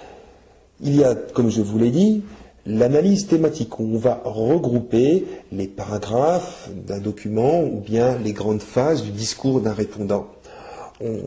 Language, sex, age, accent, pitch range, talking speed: French, male, 40-59, French, 105-145 Hz, 145 wpm